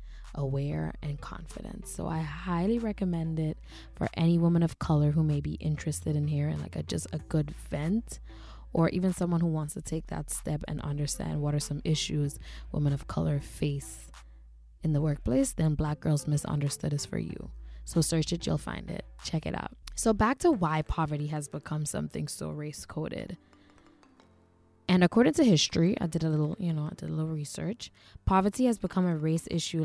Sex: female